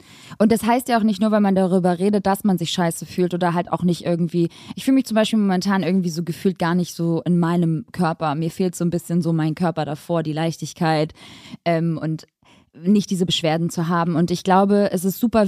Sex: female